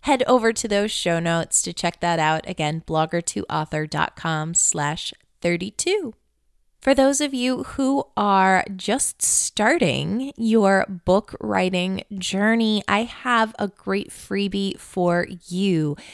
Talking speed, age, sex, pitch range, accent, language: 125 wpm, 20-39, female, 175-215 Hz, American, English